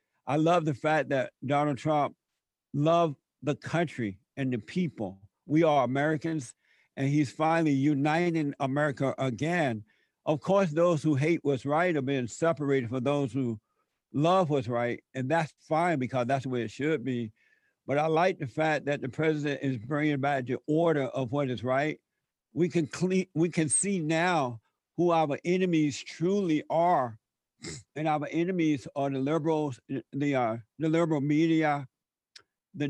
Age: 60-79